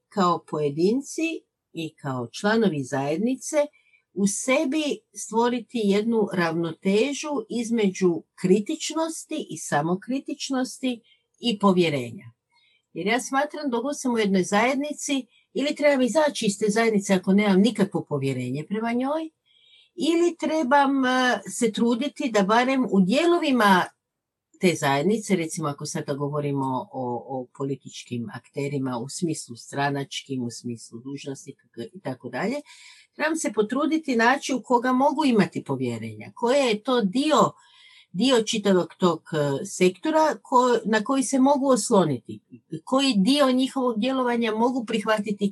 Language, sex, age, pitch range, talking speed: Croatian, female, 50-69, 160-265 Hz, 115 wpm